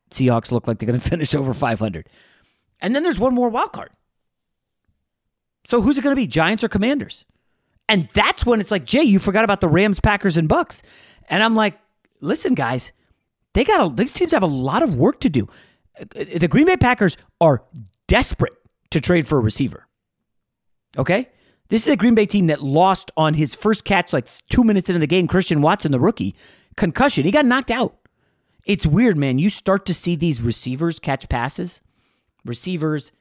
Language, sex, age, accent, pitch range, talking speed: English, male, 30-49, American, 140-215 Hz, 195 wpm